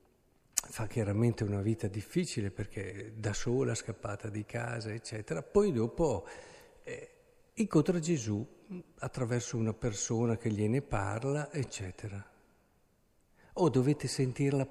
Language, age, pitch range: Italian, 50-69, 110-170 Hz